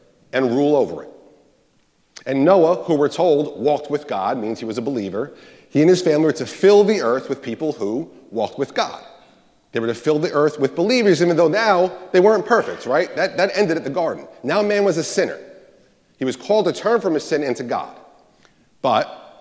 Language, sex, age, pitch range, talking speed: English, male, 40-59, 150-210 Hz, 215 wpm